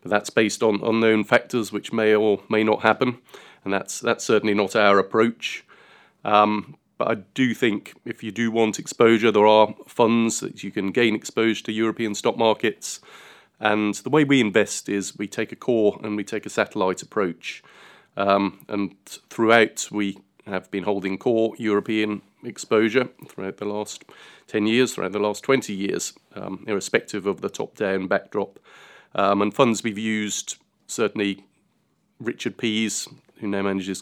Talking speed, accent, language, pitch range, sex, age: 165 wpm, British, English, 100-110 Hz, male, 30-49